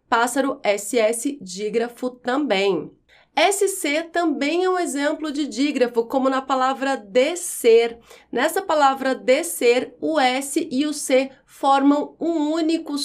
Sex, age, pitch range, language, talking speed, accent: female, 30-49, 230-315 Hz, Portuguese, 120 wpm, Brazilian